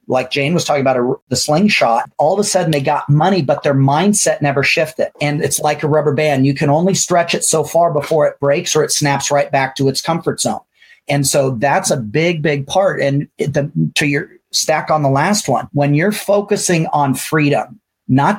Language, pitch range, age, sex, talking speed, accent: English, 140-190 Hz, 40-59, male, 210 wpm, American